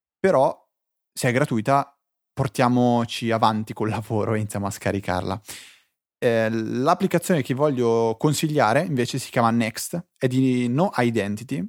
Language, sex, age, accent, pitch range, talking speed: Italian, male, 20-39, native, 110-140 Hz, 130 wpm